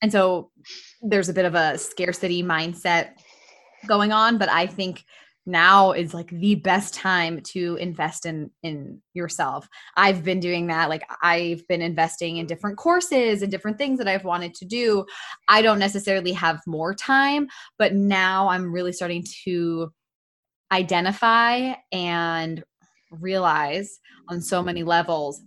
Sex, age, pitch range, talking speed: female, 20-39, 170-205 Hz, 150 wpm